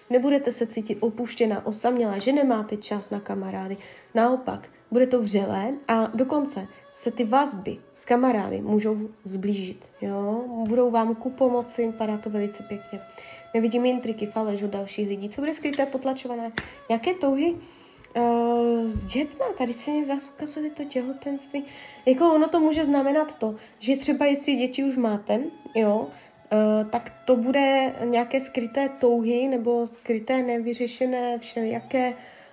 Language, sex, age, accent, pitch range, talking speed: Czech, female, 20-39, native, 215-260 Hz, 140 wpm